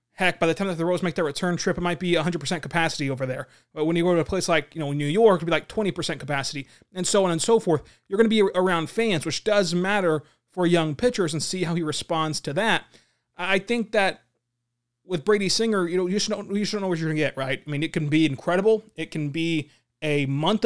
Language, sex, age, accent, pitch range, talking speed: English, male, 30-49, American, 155-195 Hz, 265 wpm